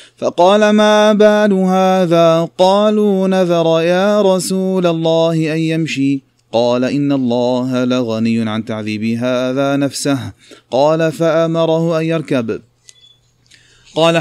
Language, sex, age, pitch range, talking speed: Arabic, male, 30-49, 125-170 Hz, 100 wpm